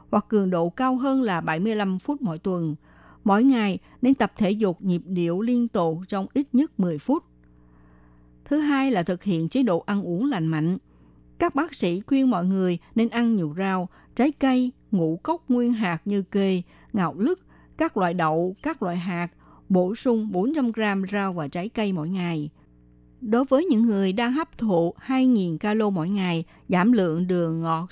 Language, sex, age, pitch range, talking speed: Vietnamese, female, 60-79, 170-240 Hz, 185 wpm